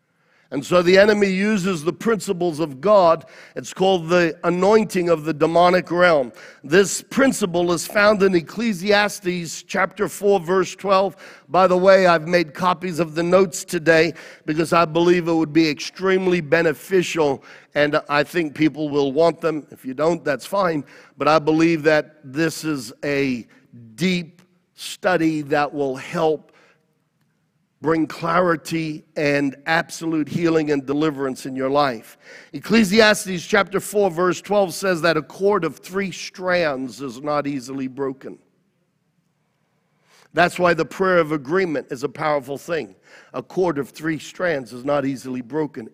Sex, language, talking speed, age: male, English, 150 wpm, 50-69